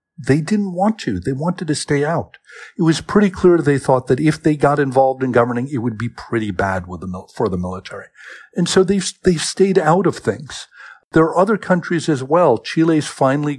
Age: 50-69